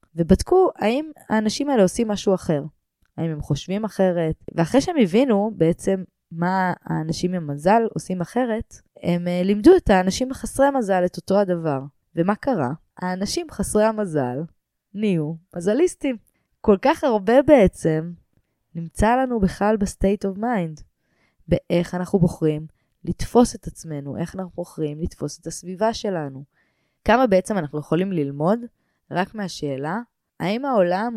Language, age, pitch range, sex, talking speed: English, 20-39, 160-215 Hz, female, 115 wpm